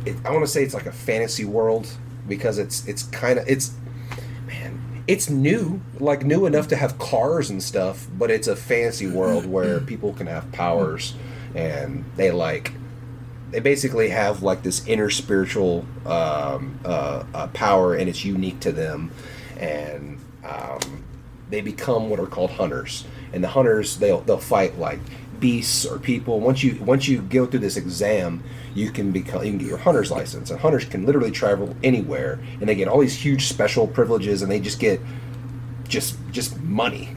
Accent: American